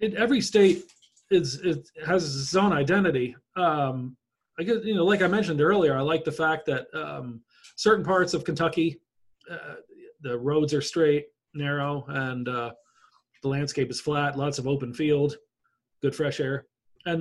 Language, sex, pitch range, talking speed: English, male, 125-160 Hz, 165 wpm